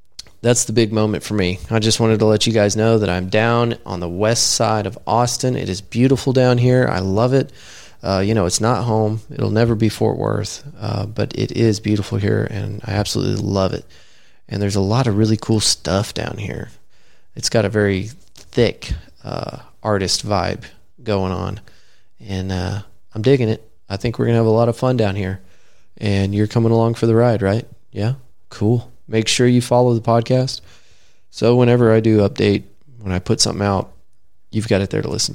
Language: English